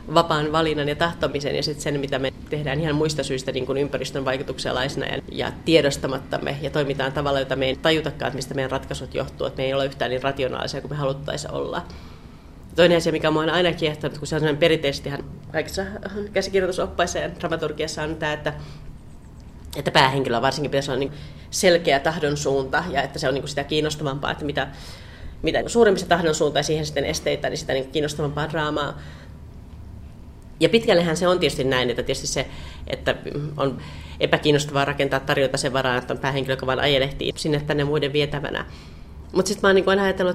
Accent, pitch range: native, 135-175 Hz